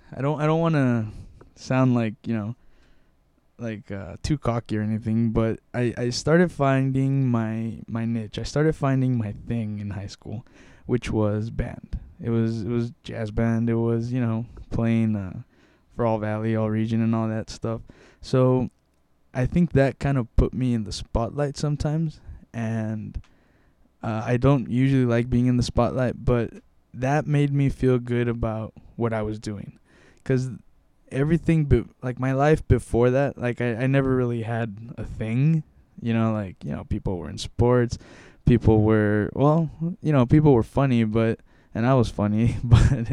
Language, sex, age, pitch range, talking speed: English, male, 10-29, 110-130 Hz, 175 wpm